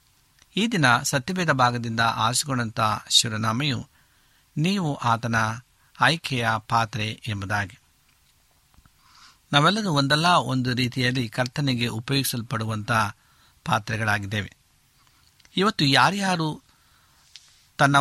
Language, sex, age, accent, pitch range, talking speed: Kannada, male, 60-79, native, 115-150 Hz, 70 wpm